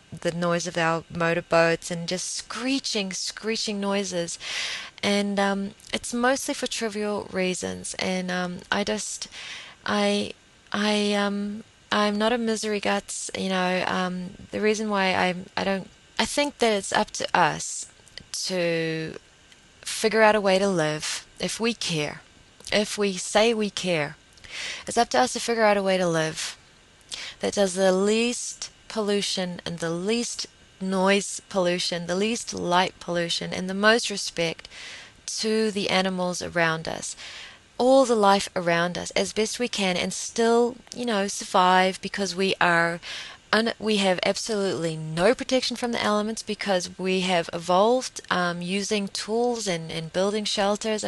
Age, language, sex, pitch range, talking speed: 20-39, English, female, 180-215 Hz, 155 wpm